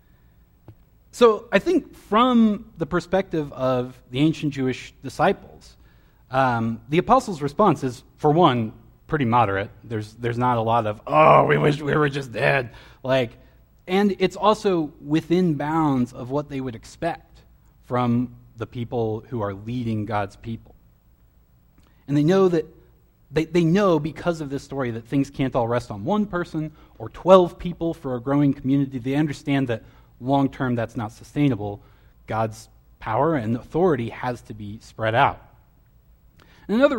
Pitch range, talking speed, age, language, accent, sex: 120-165 Hz, 160 wpm, 30-49, English, American, male